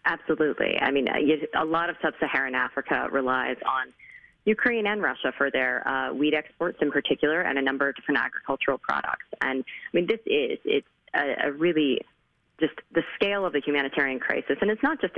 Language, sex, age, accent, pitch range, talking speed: English, female, 30-49, American, 140-200 Hz, 185 wpm